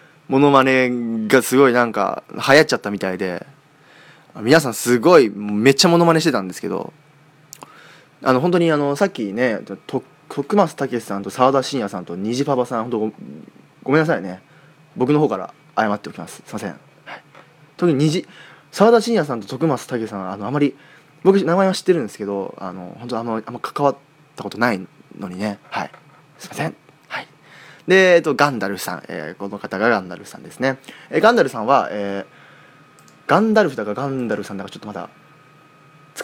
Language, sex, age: Japanese, male, 20-39